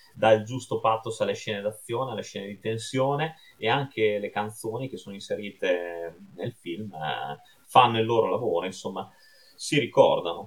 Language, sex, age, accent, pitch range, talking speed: Italian, male, 30-49, native, 105-140 Hz, 150 wpm